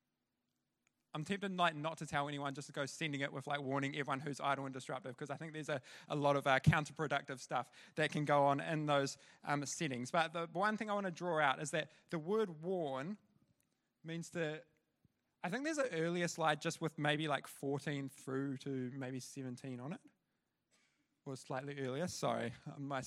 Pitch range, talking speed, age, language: 145-185 Hz, 200 wpm, 20-39, English